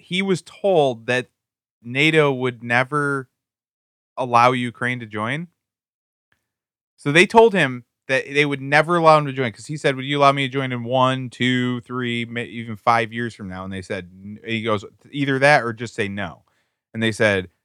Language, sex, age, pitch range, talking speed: English, male, 20-39, 110-140 Hz, 185 wpm